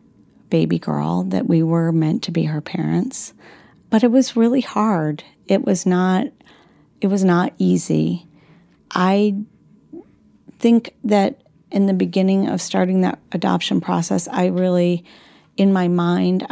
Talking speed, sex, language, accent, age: 140 wpm, female, English, American, 40-59